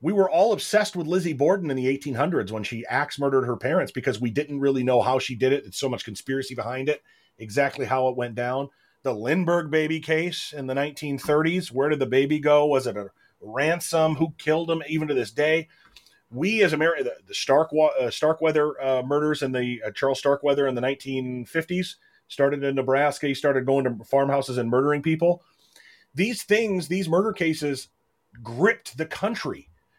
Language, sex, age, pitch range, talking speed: English, male, 30-49, 125-155 Hz, 190 wpm